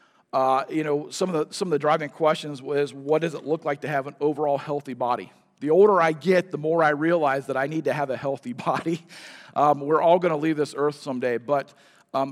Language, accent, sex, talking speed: English, American, male, 245 wpm